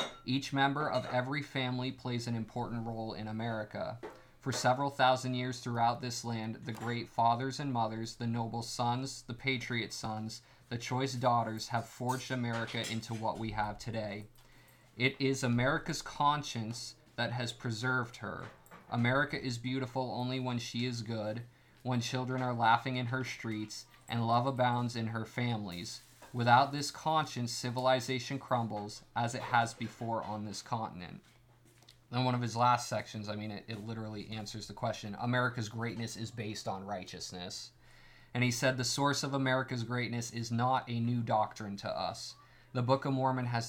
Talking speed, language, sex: 165 wpm, English, male